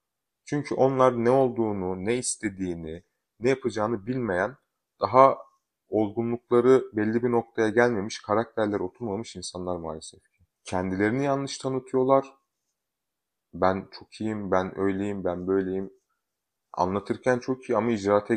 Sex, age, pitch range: male, 30-49, 100-125 Hz